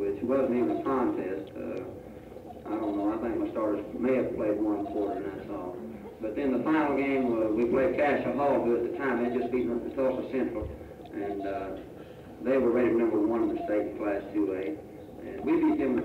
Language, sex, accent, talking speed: English, male, American, 230 wpm